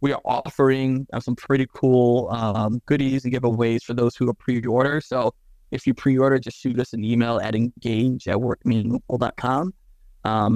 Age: 20-39